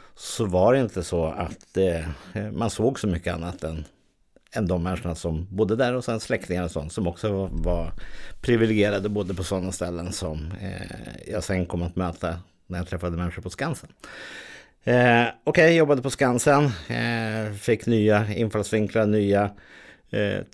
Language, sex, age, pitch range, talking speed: Swedish, male, 50-69, 90-105 Hz, 170 wpm